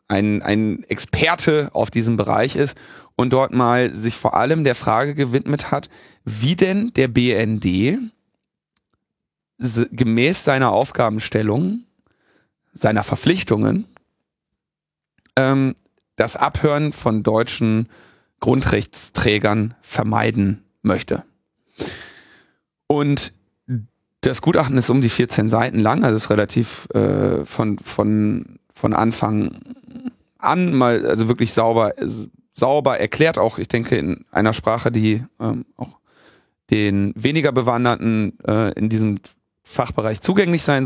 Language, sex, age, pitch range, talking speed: German, male, 30-49, 110-145 Hz, 110 wpm